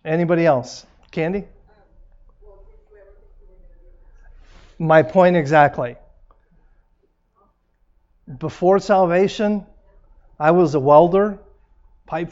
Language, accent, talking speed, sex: English, American, 65 wpm, male